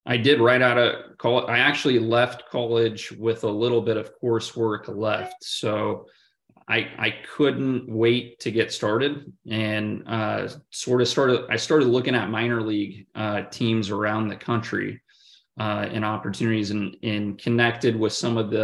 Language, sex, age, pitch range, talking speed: English, male, 20-39, 105-120 Hz, 165 wpm